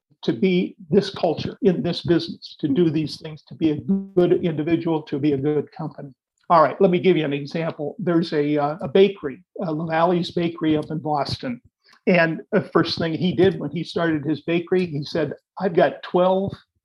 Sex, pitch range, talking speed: male, 155-190 Hz, 200 wpm